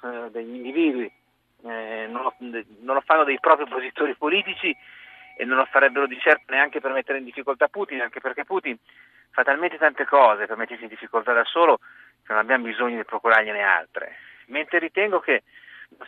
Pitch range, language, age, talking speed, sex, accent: 115-145 Hz, Italian, 40-59, 180 wpm, male, native